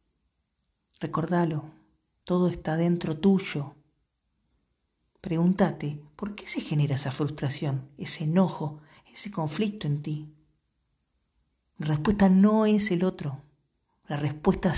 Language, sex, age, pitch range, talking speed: Spanish, female, 40-59, 120-175 Hz, 105 wpm